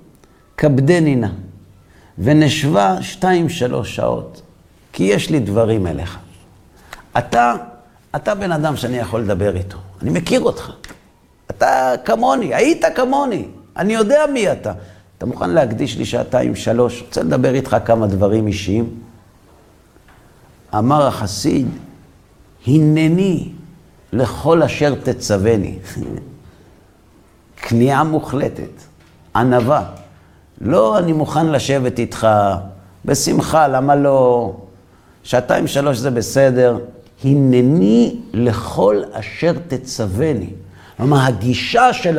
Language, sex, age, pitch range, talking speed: Hebrew, male, 50-69, 100-150 Hz, 100 wpm